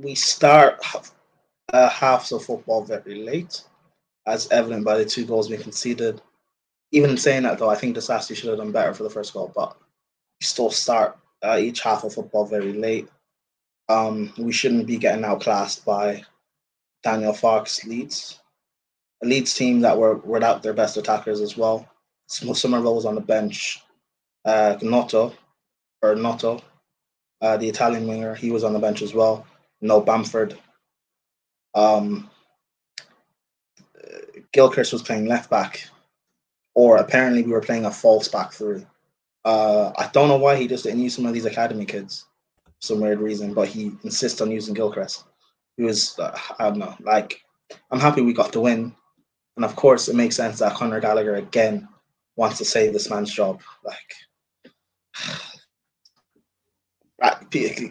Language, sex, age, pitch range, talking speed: English, male, 20-39, 110-125 Hz, 160 wpm